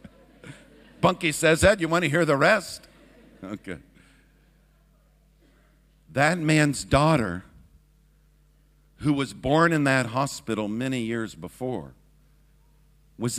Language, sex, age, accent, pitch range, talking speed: English, male, 50-69, American, 140-175 Hz, 105 wpm